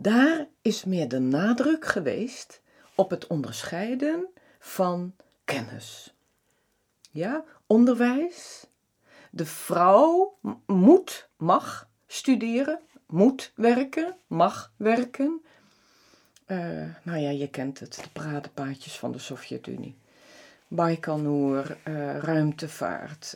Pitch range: 155-240 Hz